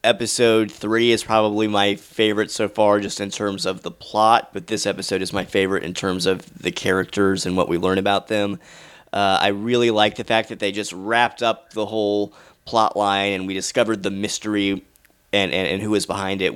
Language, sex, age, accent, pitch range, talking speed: English, male, 30-49, American, 100-110 Hz, 210 wpm